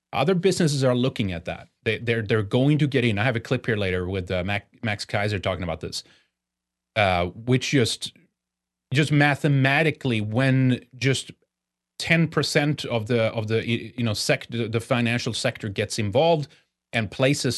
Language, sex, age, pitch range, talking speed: English, male, 30-49, 100-130 Hz, 170 wpm